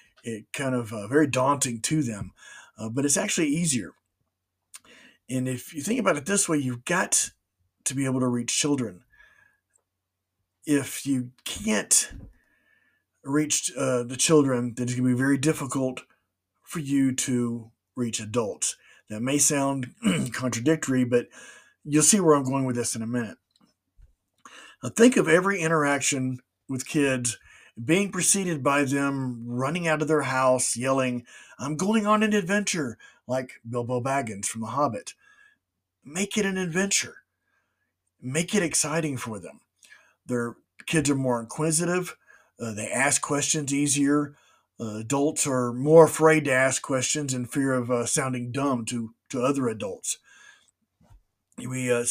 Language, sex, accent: English, male, American